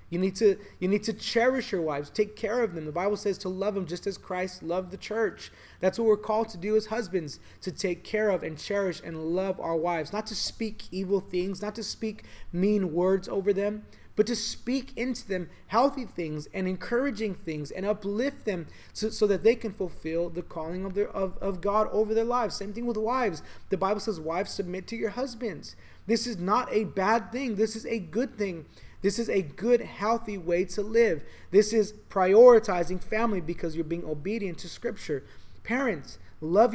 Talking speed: 200 wpm